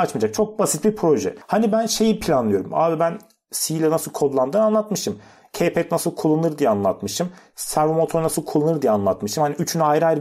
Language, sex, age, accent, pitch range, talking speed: Turkish, male, 40-59, native, 140-185 Hz, 180 wpm